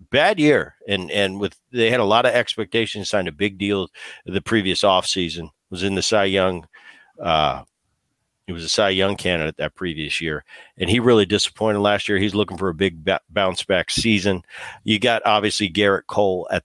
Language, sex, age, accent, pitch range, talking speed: English, male, 50-69, American, 95-120 Hz, 195 wpm